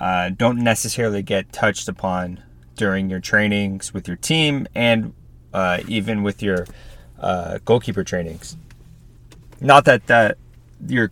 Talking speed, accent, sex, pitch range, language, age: 130 wpm, American, male, 90-110 Hz, English, 30-49